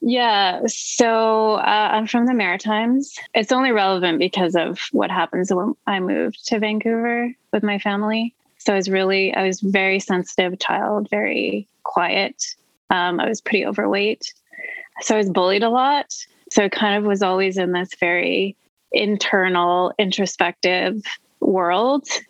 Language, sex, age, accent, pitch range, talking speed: English, female, 20-39, American, 185-225 Hz, 155 wpm